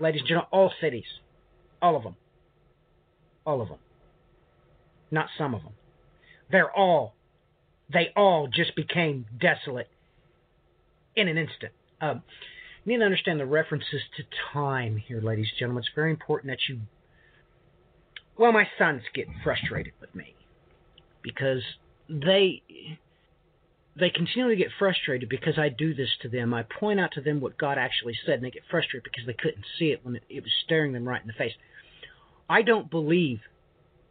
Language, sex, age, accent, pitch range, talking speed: English, male, 50-69, American, 120-165 Hz, 165 wpm